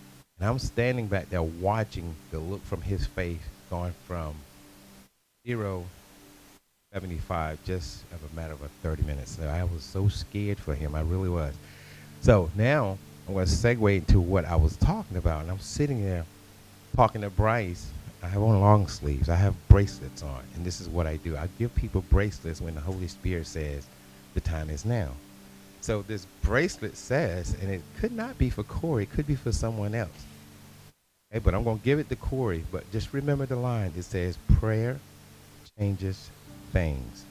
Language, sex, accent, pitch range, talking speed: English, male, American, 85-110 Hz, 185 wpm